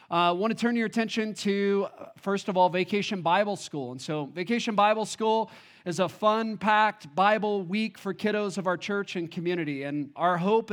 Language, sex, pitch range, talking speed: English, male, 175-210 Hz, 185 wpm